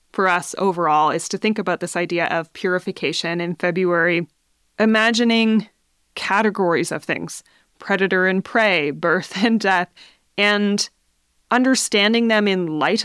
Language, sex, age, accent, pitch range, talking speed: English, female, 20-39, American, 170-205 Hz, 130 wpm